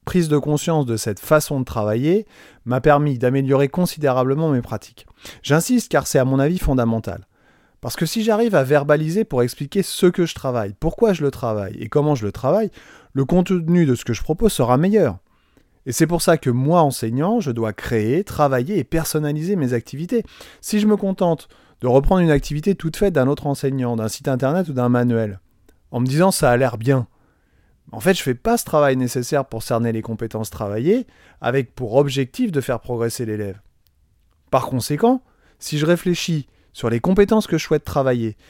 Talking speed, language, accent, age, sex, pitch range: 195 wpm, French, French, 30-49, male, 120-170 Hz